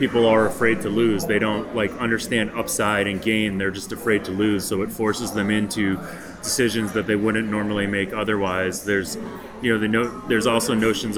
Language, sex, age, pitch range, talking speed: English, male, 30-49, 105-125 Hz, 200 wpm